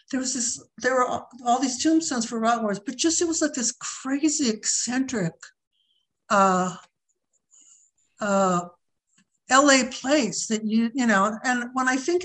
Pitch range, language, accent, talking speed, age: 195-260 Hz, English, American, 155 wpm, 60-79